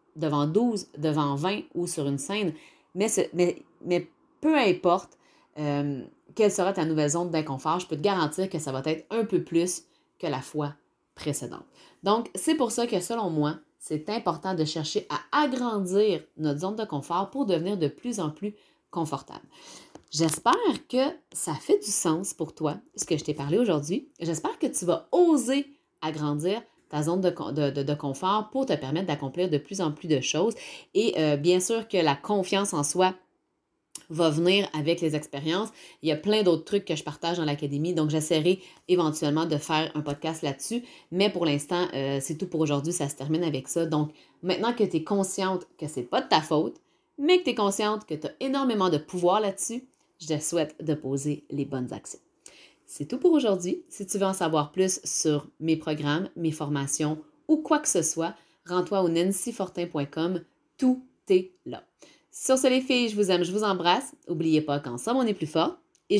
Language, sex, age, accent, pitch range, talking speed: French, female, 30-49, Canadian, 155-210 Hz, 195 wpm